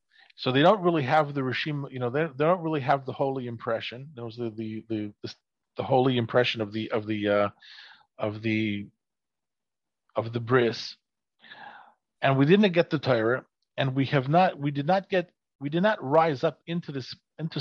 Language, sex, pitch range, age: English, male, 125-165 Hz, 40-59